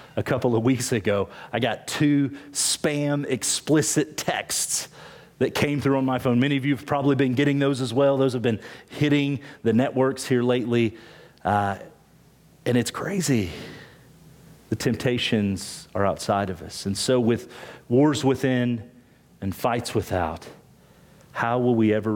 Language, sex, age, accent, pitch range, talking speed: English, male, 40-59, American, 100-130 Hz, 155 wpm